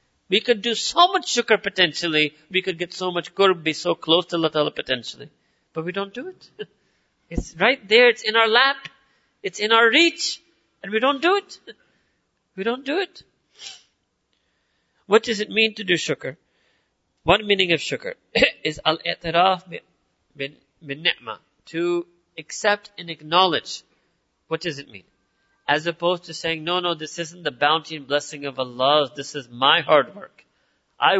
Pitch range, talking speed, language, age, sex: 160-220 Hz, 165 wpm, English, 40-59, male